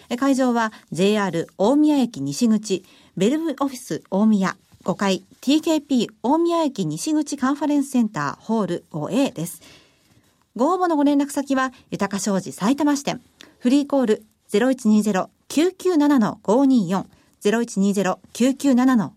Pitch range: 205-285 Hz